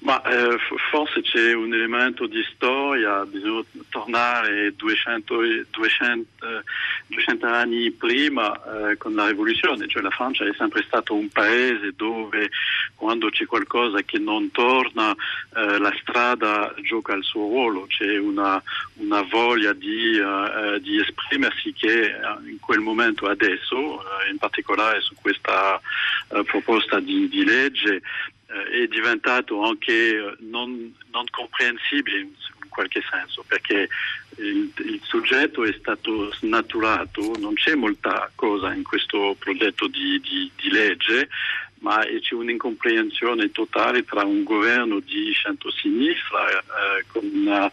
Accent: French